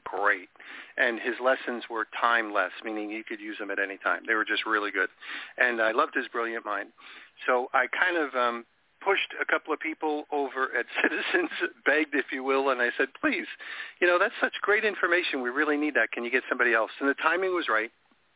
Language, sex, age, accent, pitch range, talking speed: English, male, 50-69, American, 120-155 Hz, 215 wpm